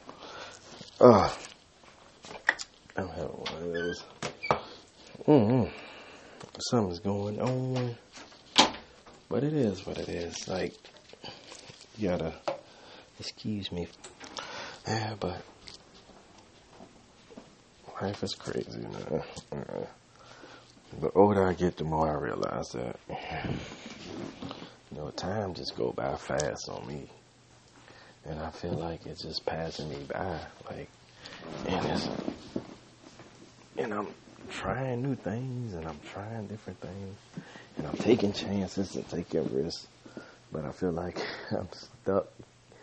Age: 30-49